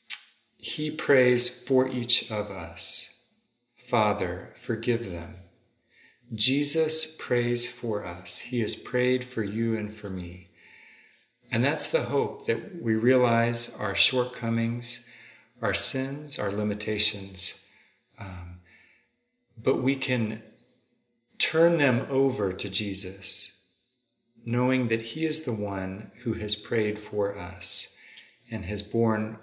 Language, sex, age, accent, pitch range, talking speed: English, male, 50-69, American, 100-125 Hz, 115 wpm